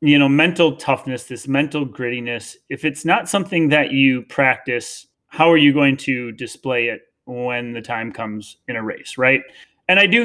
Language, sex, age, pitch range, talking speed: English, male, 30-49, 130-170 Hz, 185 wpm